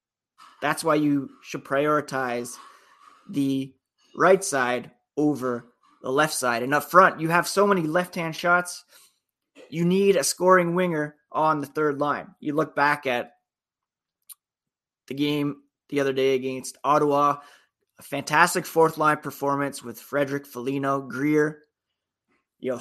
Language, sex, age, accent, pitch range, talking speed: English, male, 20-39, American, 130-155 Hz, 130 wpm